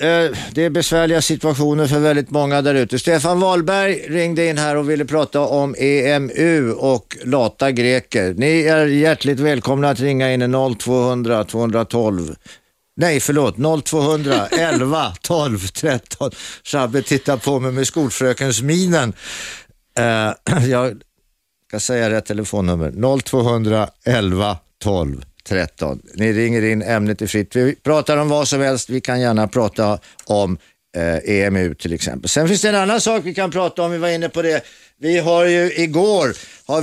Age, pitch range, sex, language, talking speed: 60-79, 115-155 Hz, male, Swedish, 145 wpm